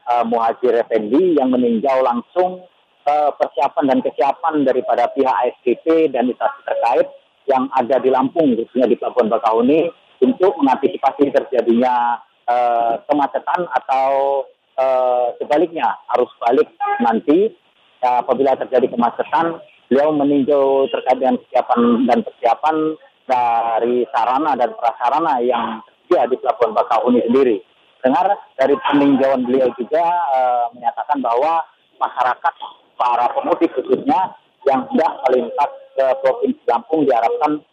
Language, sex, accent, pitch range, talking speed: Indonesian, male, native, 125-170 Hz, 120 wpm